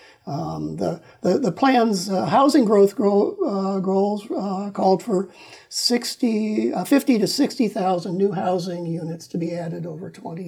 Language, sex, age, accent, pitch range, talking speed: English, male, 50-69, American, 175-230 Hz, 160 wpm